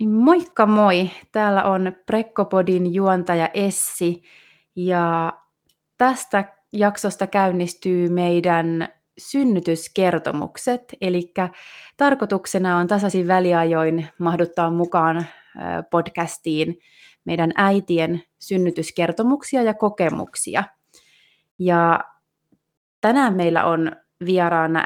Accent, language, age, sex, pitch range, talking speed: native, Finnish, 30-49, female, 170-195 Hz, 75 wpm